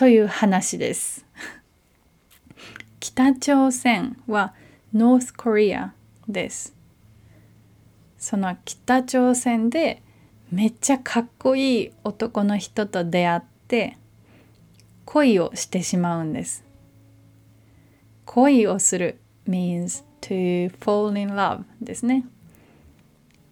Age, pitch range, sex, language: 20-39, 165-225 Hz, female, Japanese